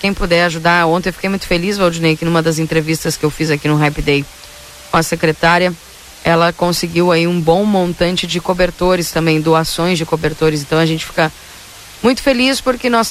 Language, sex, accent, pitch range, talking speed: Portuguese, female, Brazilian, 160-190 Hz, 195 wpm